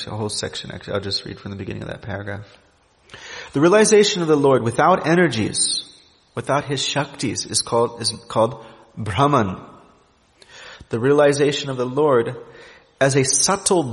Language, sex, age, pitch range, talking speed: English, male, 30-49, 105-155 Hz, 155 wpm